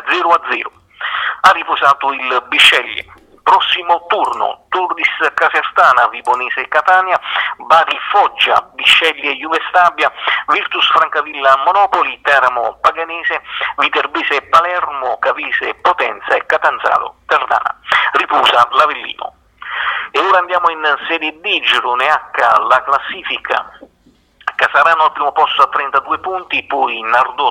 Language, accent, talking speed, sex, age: Italian, native, 110 wpm, male, 50-69